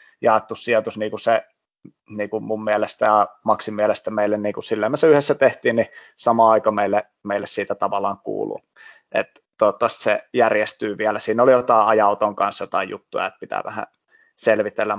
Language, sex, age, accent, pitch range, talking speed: Finnish, male, 30-49, native, 105-120 Hz, 170 wpm